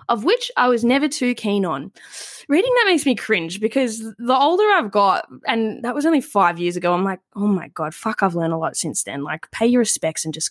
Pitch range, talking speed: 195-290 Hz, 245 wpm